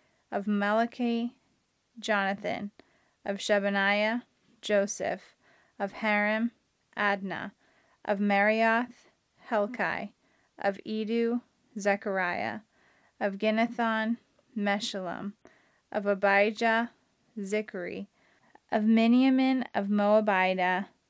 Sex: female